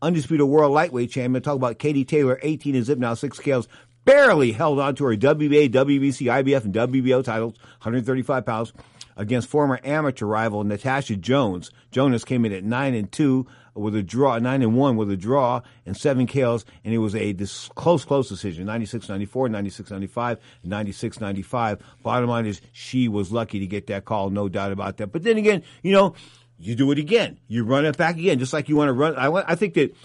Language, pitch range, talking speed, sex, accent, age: English, 115-145 Hz, 200 wpm, male, American, 50-69